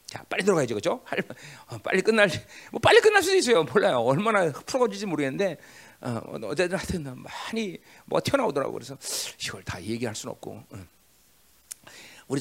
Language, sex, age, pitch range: Korean, male, 40-59, 140-220 Hz